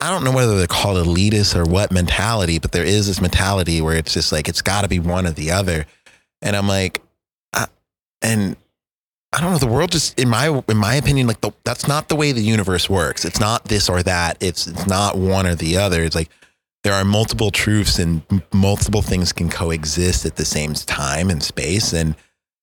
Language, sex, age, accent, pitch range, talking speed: English, male, 30-49, American, 85-105 Hz, 215 wpm